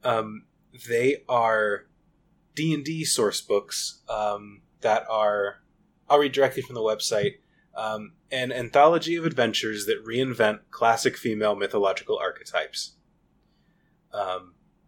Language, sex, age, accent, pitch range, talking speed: English, male, 20-39, American, 110-160 Hz, 115 wpm